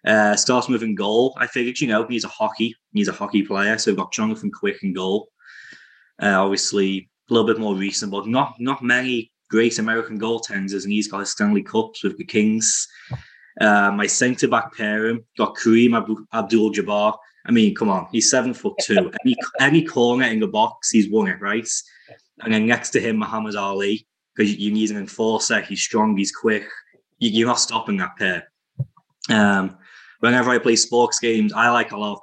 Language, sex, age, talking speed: English, male, 20-39, 200 wpm